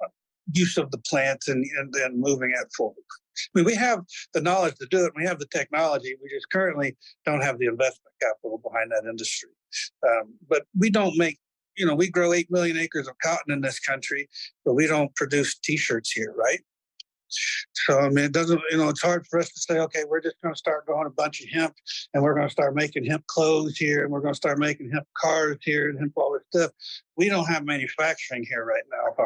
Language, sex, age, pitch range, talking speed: English, male, 60-79, 135-180 Hz, 230 wpm